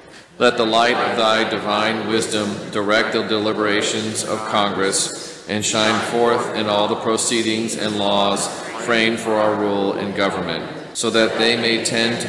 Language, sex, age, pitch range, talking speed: English, male, 40-59, 105-115 Hz, 160 wpm